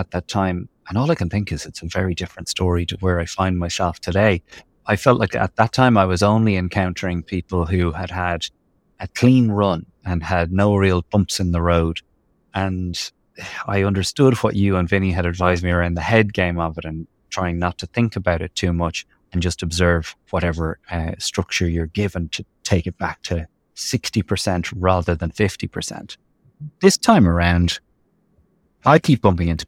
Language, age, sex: English, 30-49, male